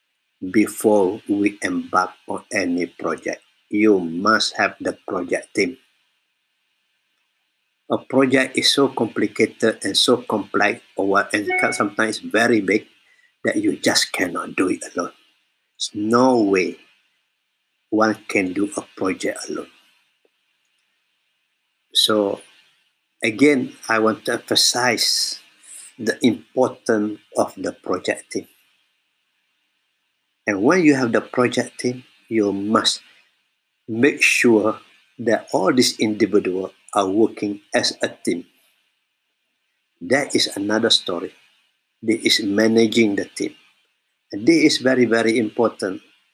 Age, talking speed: 50-69, 115 wpm